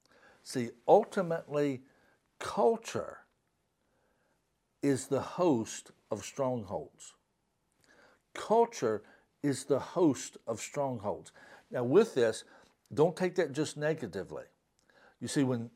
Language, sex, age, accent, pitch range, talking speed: English, male, 60-79, American, 120-155 Hz, 95 wpm